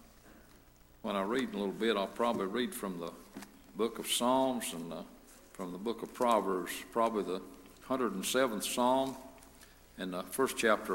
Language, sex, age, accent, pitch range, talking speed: English, male, 60-79, American, 105-135 Hz, 160 wpm